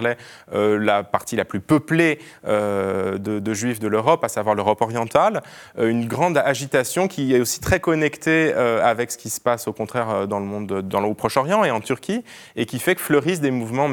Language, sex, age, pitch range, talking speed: French, male, 20-39, 115-150 Hz, 200 wpm